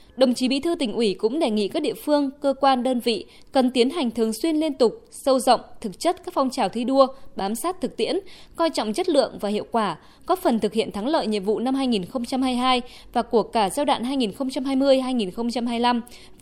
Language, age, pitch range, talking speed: Vietnamese, 20-39, 215-285 Hz, 215 wpm